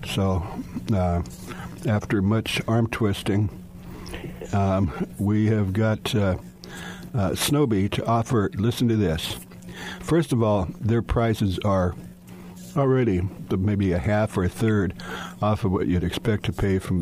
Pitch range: 90-115 Hz